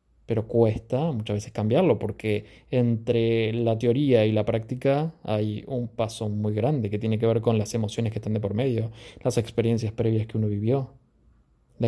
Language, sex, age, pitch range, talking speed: Spanish, male, 20-39, 110-130 Hz, 180 wpm